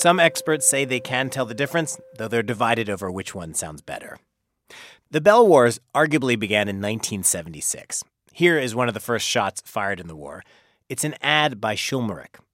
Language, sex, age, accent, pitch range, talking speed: English, male, 30-49, American, 105-150 Hz, 185 wpm